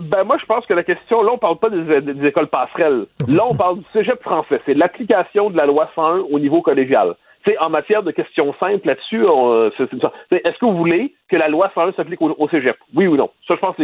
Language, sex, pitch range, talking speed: French, male, 145-225 Hz, 265 wpm